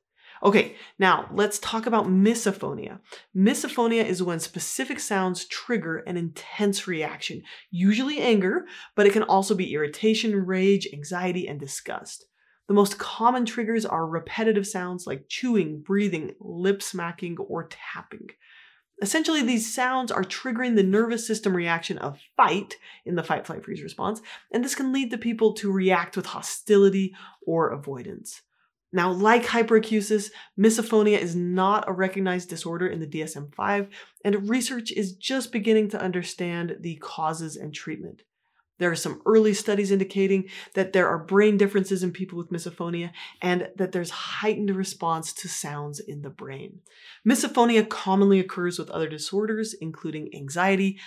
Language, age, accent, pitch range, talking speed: English, 30-49, American, 175-215 Hz, 145 wpm